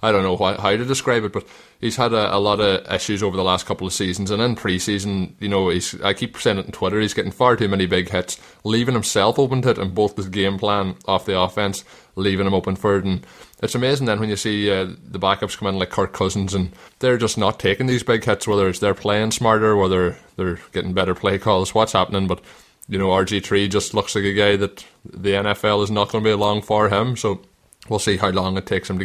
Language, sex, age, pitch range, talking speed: English, male, 20-39, 95-105 Hz, 255 wpm